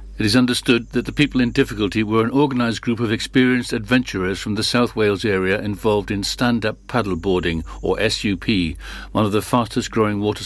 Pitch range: 95-115 Hz